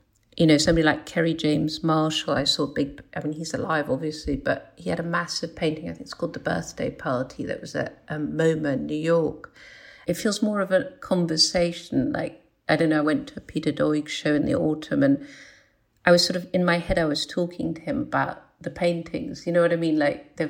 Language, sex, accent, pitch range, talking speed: English, female, British, 155-195 Hz, 230 wpm